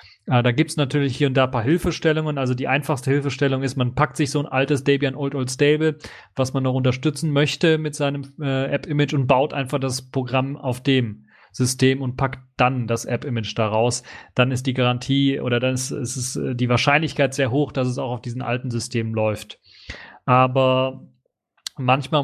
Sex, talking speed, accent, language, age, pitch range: male, 185 wpm, German, German, 30-49, 125-140 Hz